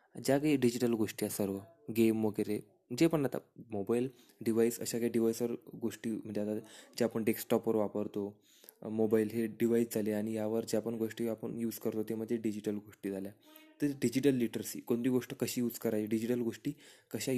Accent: native